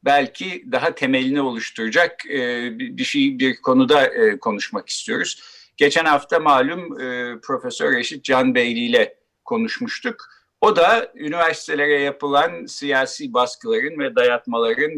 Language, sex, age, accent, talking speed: Turkish, male, 50-69, native, 105 wpm